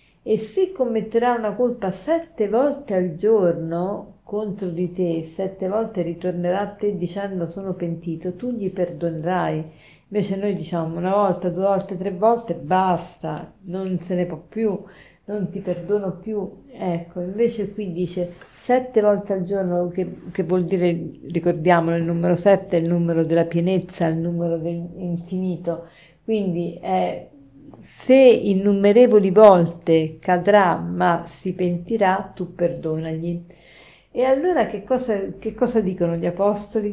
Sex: female